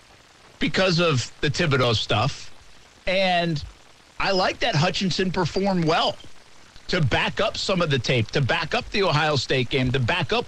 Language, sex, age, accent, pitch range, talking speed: English, male, 50-69, American, 135-195 Hz, 165 wpm